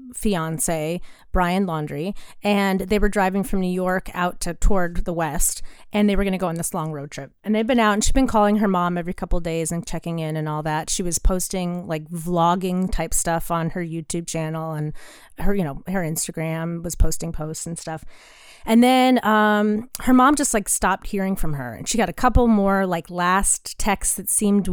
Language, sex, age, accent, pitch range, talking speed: English, female, 30-49, American, 170-225 Hz, 215 wpm